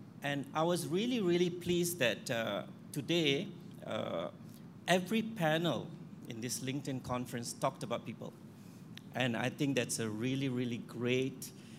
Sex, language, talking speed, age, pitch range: male, English, 135 wpm, 50-69, 125-160 Hz